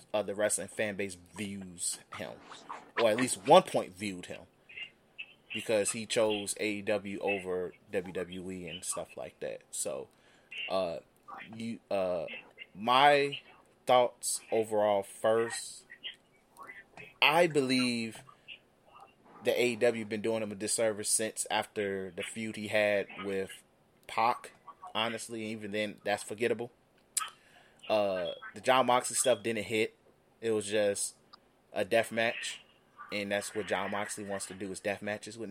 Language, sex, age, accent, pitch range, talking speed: English, male, 20-39, American, 100-120 Hz, 135 wpm